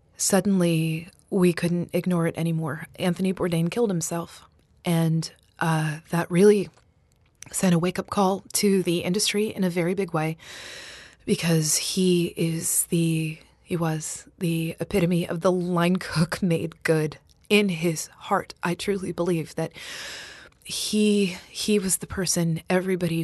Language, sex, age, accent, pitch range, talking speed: English, female, 20-39, American, 165-195 Hz, 135 wpm